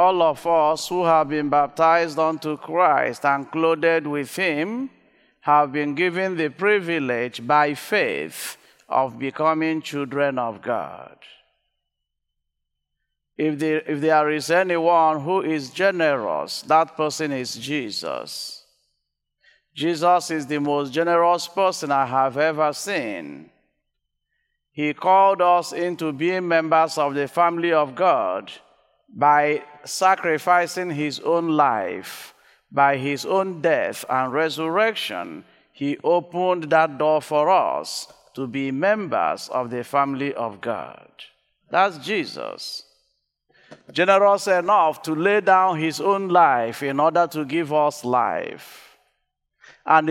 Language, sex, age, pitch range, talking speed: English, male, 50-69, 145-180 Hz, 120 wpm